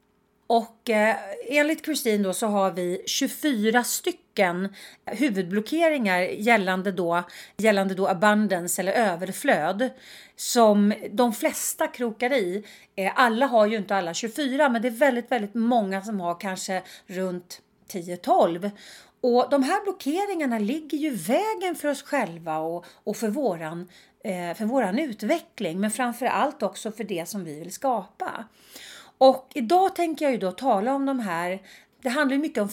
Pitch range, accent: 190-255 Hz, native